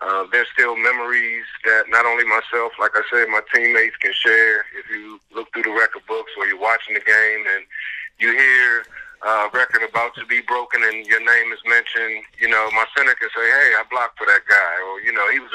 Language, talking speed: English, 230 wpm